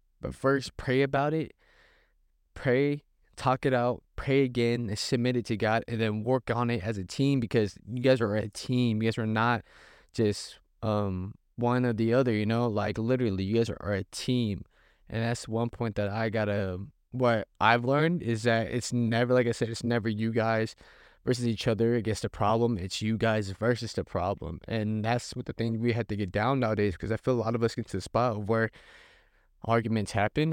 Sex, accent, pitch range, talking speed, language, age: male, American, 105-125 Hz, 210 wpm, English, 20-39